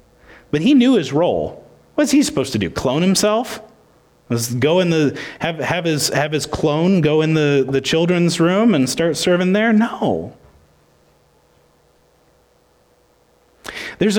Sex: male